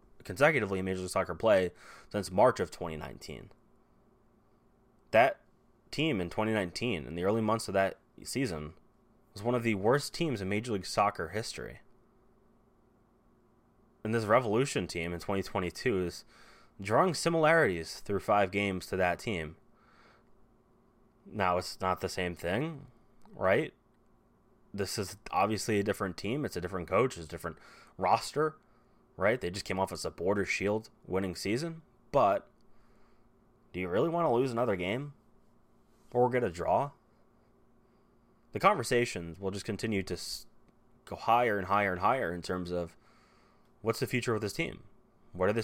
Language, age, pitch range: English, 20-39, 95-120 Hz